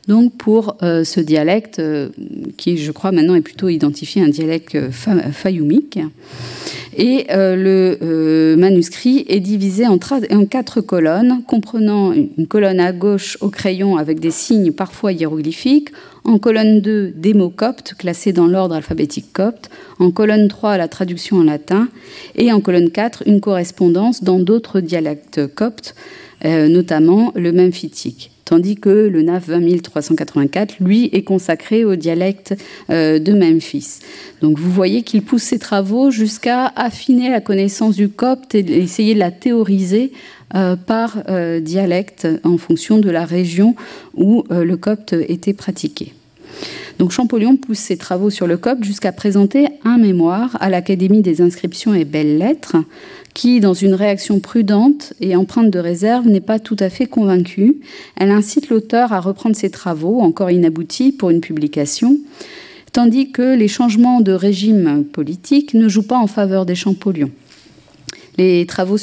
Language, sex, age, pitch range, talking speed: French, female, 40-59, 175-225 Hz, 155 wpm